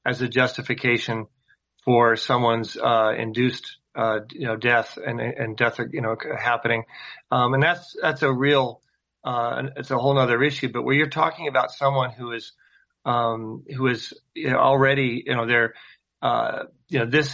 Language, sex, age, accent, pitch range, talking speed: English, male, 40-59, American, 115-135 Hz, 165 wpm